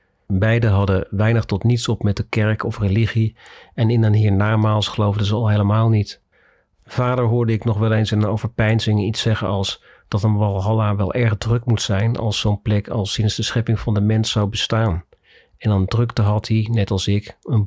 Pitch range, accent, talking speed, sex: 100-115 Hz, Dutch, 205 wpm, male